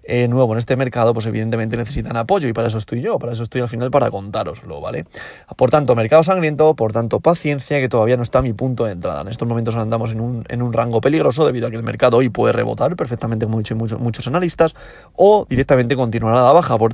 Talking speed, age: 245 wpm, 30-49